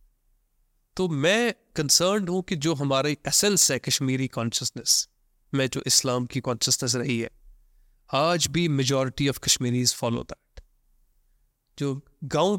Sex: male